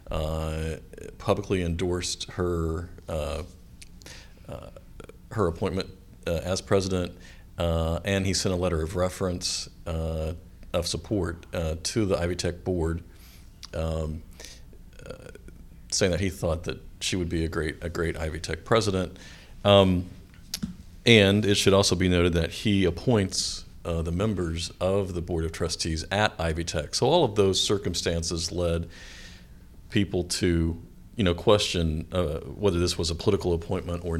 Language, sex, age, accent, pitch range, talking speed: English, male, 50-69, American, 85-95 Hz, 150 wpm